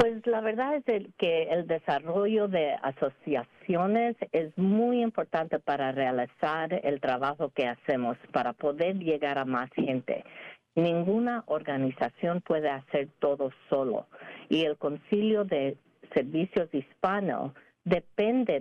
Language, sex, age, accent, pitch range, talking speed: English, female, 50-69, American, 135-180 Hz, 120 wpm